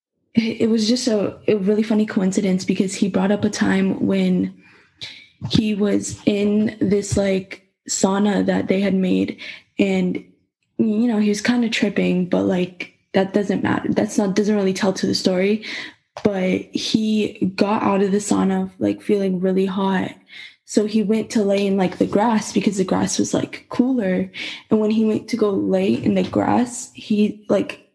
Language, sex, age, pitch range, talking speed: English, female, 10-29, 185-215 Hz, 180 wpm